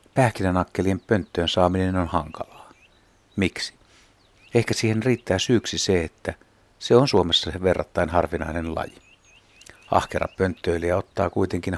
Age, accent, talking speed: 60-79, native, 110 wpm